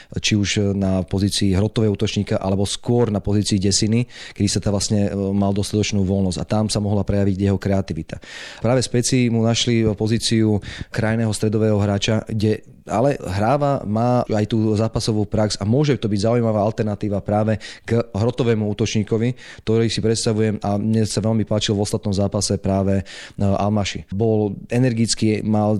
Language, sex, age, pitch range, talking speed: Slovak, male, 30-49, 105-115 Hz, 155 wpm